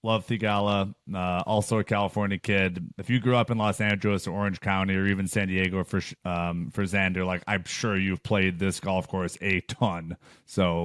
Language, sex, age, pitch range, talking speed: English, male, 30-49, 95-115 Hz, 200 wpm